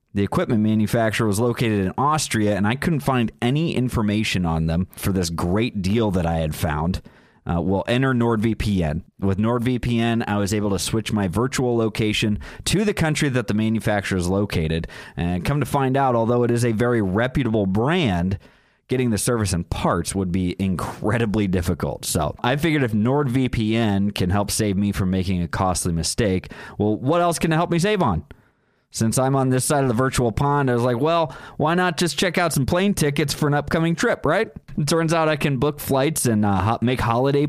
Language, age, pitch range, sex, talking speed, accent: English, 30-49, 100-135 Hz, male, 200 wpm, American